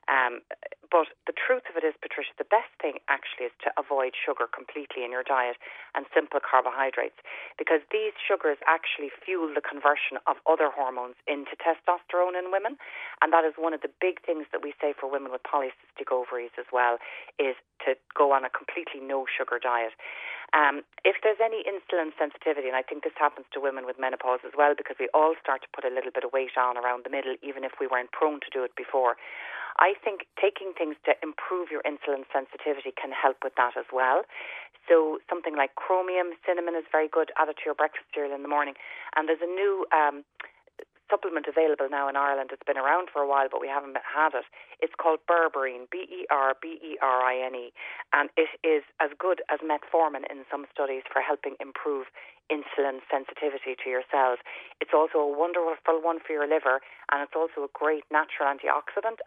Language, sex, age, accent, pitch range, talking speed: English, female, 30-49, Irish, 135-175 Hz, 195 wpm